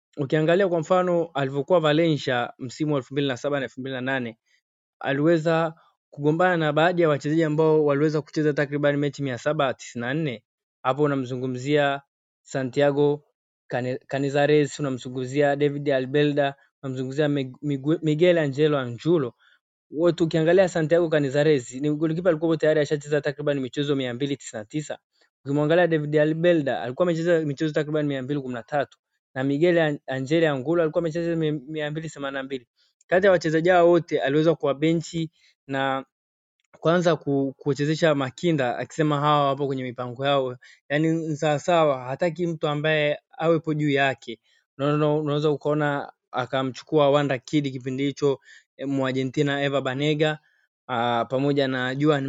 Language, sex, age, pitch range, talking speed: Swahili, male, 20-39, 135-155 Hz, 115 wpm